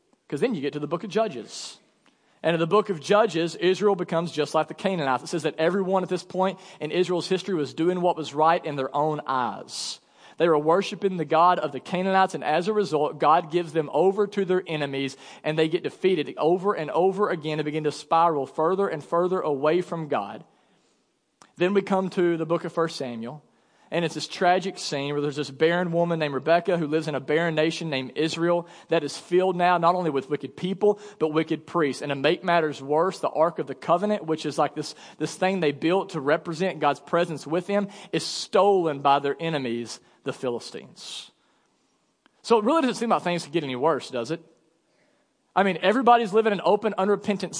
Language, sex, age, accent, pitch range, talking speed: English, male, 40-59, American, 155-190 Hz, 215 wpm